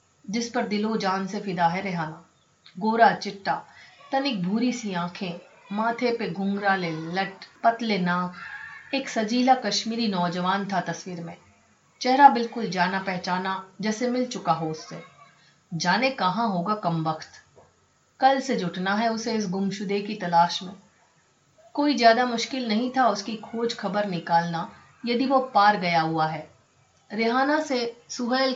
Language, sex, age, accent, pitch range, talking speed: Hindi, female, 30-49, native, 185-240 Hz, 145 wpm